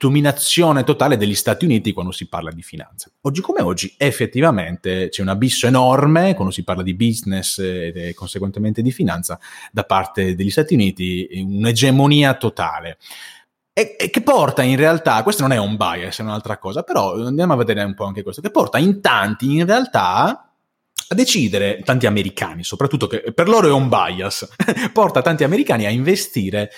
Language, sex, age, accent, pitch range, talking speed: Italian, male, 30-49, native, 95-135 Hz, 175 wpm